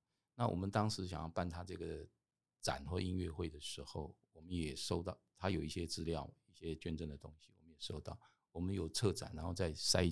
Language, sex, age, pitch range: Chinese, male, 50-69, 80-105 Hz